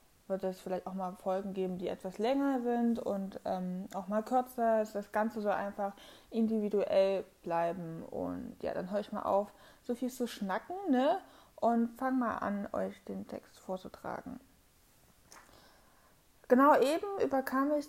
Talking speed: 160 wpm